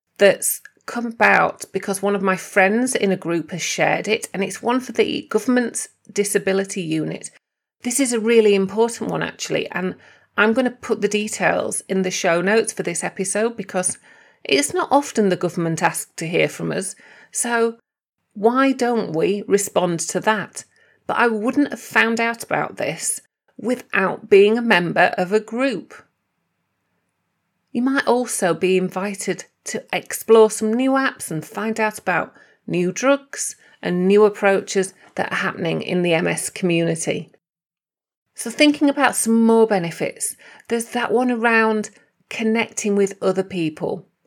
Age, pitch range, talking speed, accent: 40-59, 190-240 Hz, 155 wpm, British